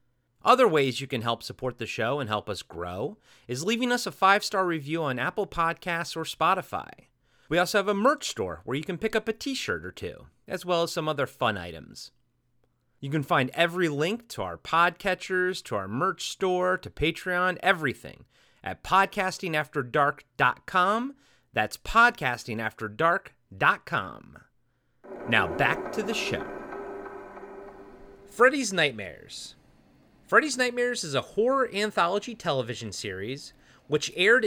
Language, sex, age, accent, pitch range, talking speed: English, male, 30-49, American, 130-200 Hz, 140 wpm